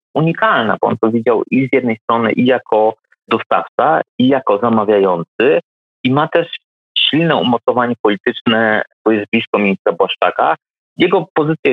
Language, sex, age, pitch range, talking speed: Polish, male, 30-49, 105-135 Hz, 145 wpm